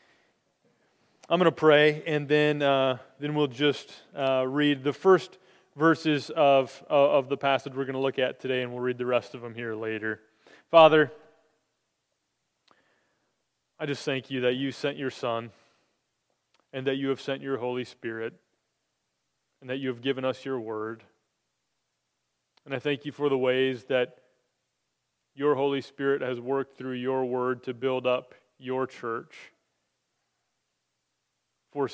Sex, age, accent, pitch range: male, 30-49, American, 120-135 Hz